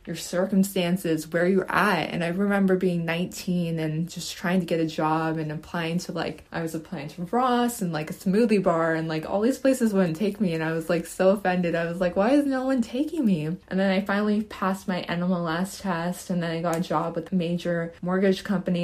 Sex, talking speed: female, 235 wpm